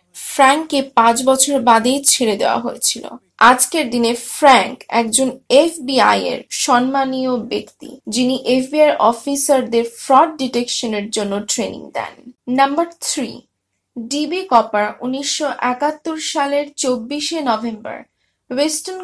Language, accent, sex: Bengali, native, female